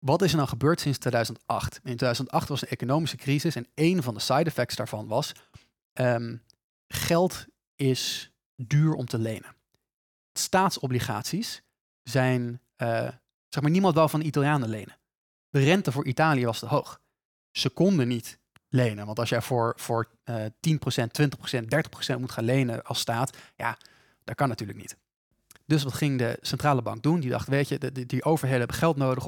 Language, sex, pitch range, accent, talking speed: Dutch, male, 120-150 Hz, Dutch, 175 wpm